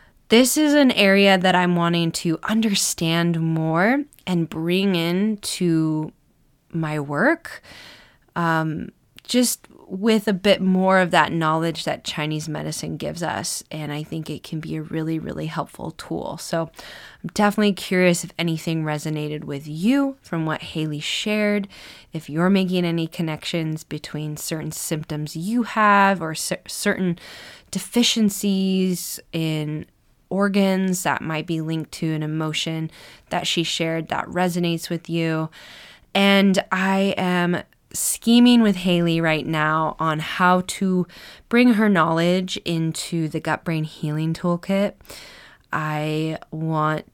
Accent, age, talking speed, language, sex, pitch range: American, 20-39, 135 wpm, English, female, 155-195 Hz